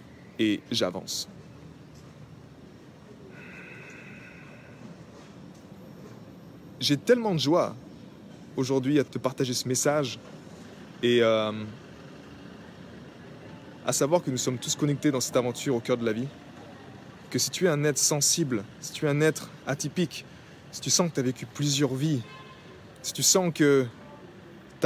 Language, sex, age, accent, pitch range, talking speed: French, male, 20-39, French, 125-155 Hz, 135 wpm